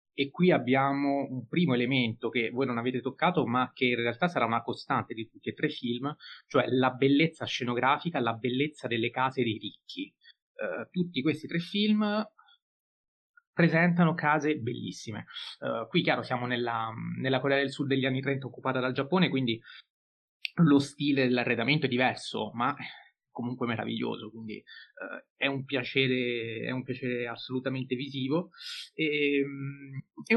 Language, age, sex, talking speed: Italian, 30-49, male, 150 wpm